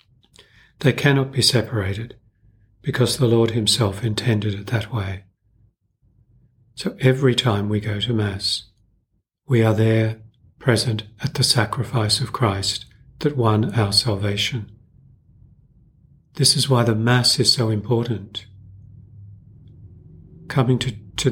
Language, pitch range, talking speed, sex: English, 105-125 Hz, 120 wpm, male